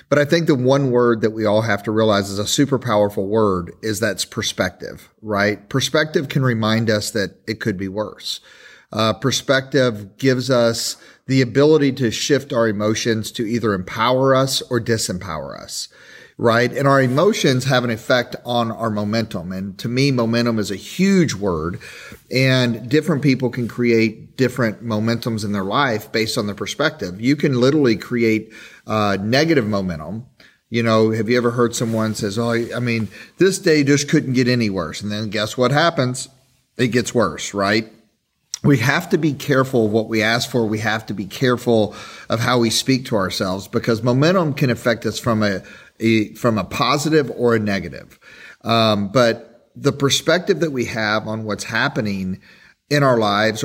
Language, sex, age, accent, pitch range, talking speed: English, male, 40-59, American, 105-130 Hz, 180 wpm